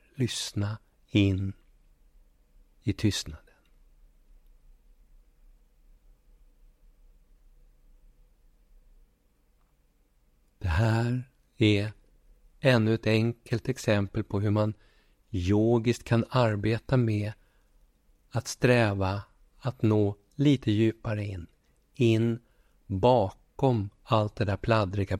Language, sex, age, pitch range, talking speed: Swedish, male, 60-79, 100-120 Hz, 75 wpm